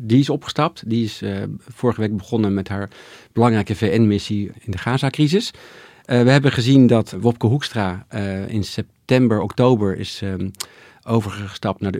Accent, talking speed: Dutch, 155 wpm